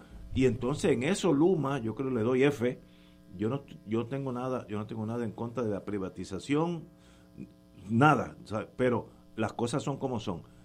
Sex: male